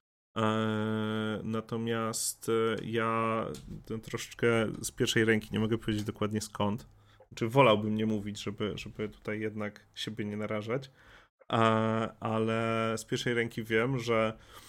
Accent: native